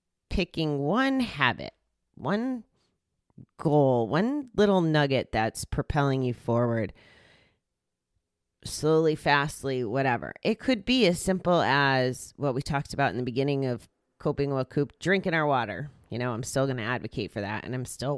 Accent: American